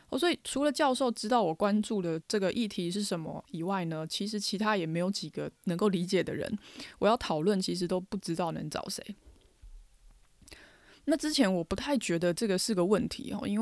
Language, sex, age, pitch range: Chinese, female, 20-39, 175-220 Hz